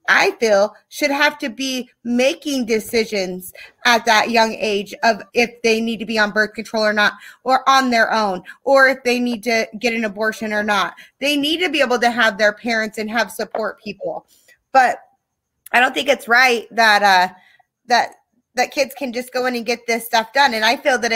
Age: 20-39